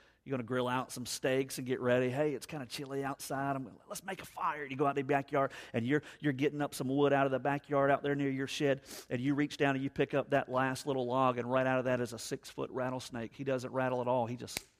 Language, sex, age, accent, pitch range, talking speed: English, male, 40-59, American, 115-140 Hz, 295 wpm